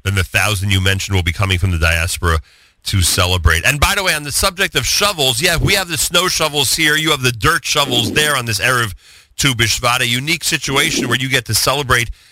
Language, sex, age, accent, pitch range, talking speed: English, male, 40-59, American, 95-130 Hz, 235 wpm